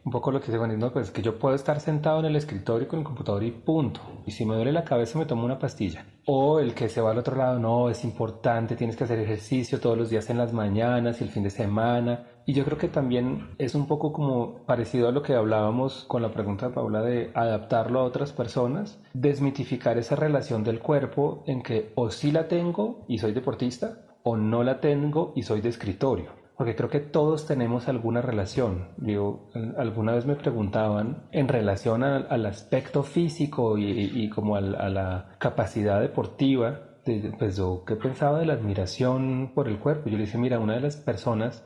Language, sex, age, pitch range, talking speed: Spanish, male, 30-49, 115-145 Hz, 215 wpm